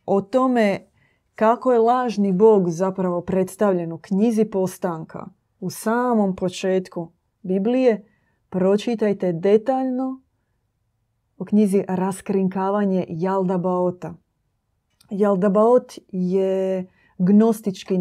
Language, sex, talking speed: Croatian, female, 80 wpm